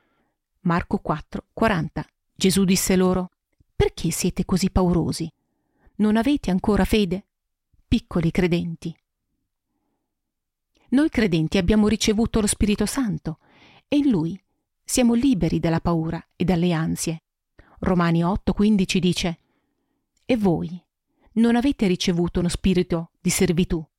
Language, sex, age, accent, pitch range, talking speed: Italian, female, 40-59, native, 170-225 Hz, 110 wpm